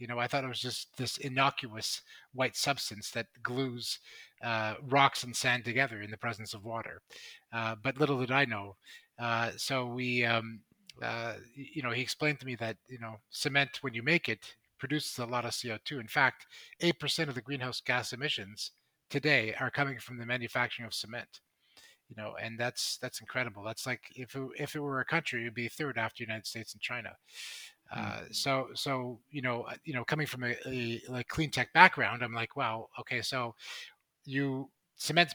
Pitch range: 115-140 Hz